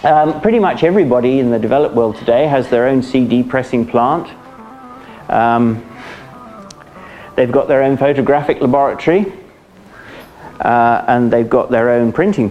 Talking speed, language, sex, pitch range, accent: 140 wpm, English, male, 115-135 Hz, British